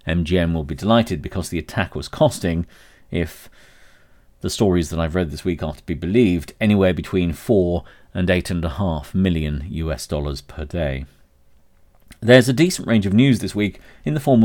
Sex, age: male, 40-59